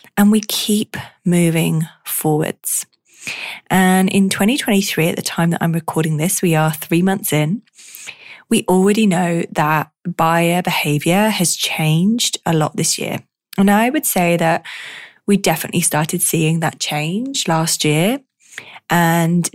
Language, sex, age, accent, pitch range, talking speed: English, female, 20-39, British, 165-210 Hz, 140 wpm